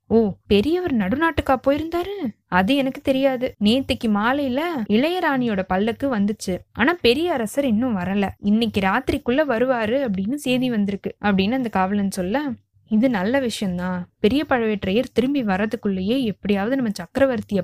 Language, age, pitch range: Tamil, 20-39, 205-270 Hz